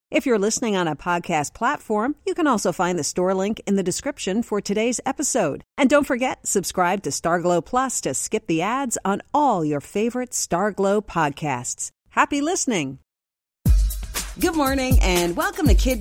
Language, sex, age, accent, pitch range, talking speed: English, female, 40-59, American, 150-230 Hz, 170 wpm